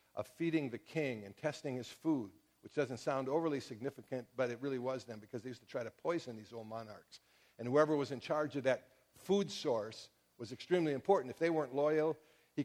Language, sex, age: English, male, 50-69